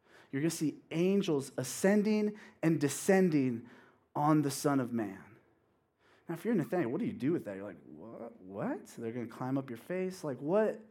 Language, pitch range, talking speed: English, 140-190 Hz, 205 wpm